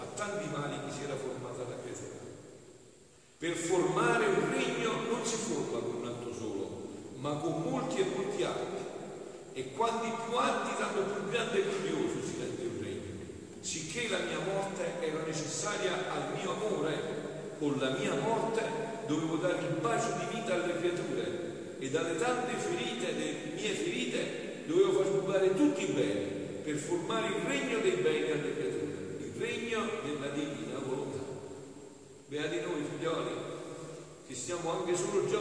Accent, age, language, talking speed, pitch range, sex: native, 50-69, Italian, 155 wpm, 155-210 Hz, male